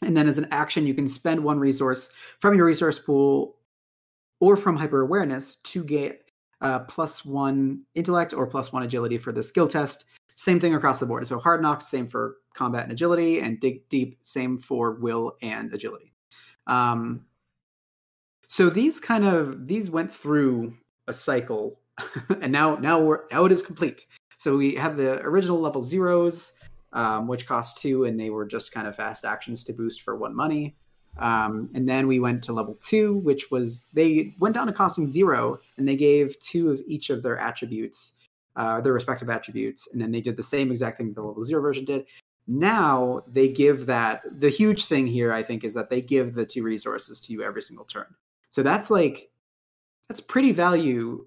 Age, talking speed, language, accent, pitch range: 30-49, 190 wpm, English, American, 120-160 Hz